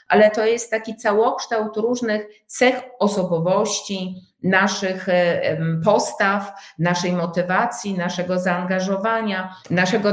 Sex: female